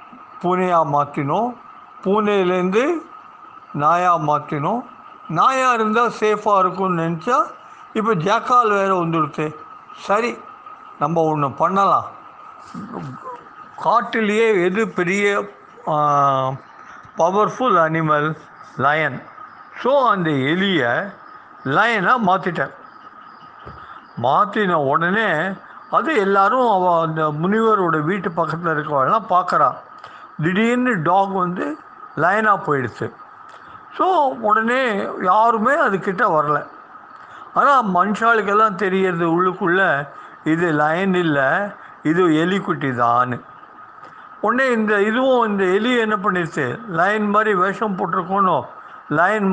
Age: 60-79